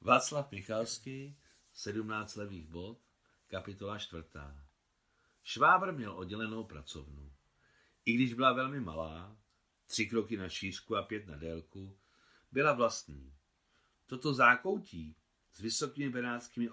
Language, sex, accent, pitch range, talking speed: Czech, male, native, 80-120 Hz, 110 wpm